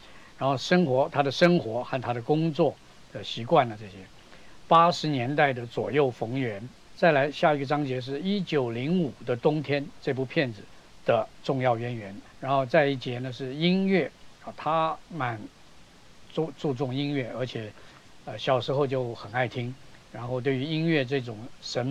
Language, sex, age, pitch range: Chinese, male, 50-69, 120-150 Hz